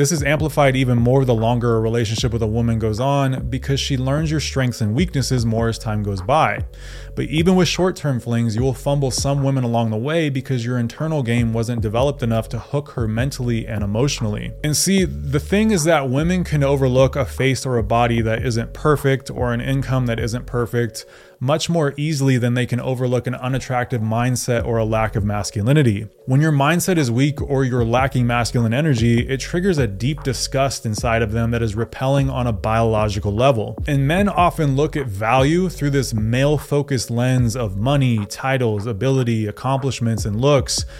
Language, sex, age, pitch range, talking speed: English, male, 20-39, 115-140 Hz, 195 wpm